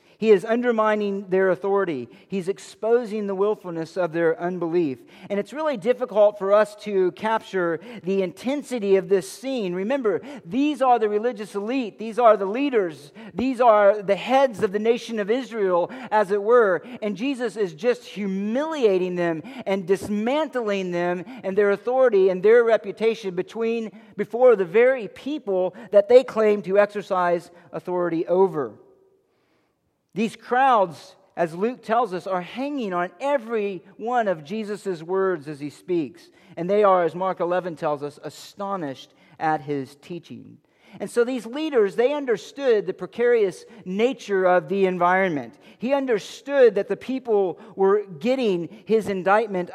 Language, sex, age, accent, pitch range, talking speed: English, male, 50-69, American, 185-245 Hz, 150 wpm